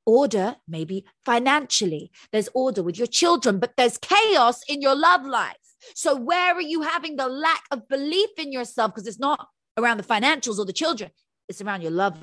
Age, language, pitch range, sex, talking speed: 30-49, English, 220-325 Hz, female, 190 wpm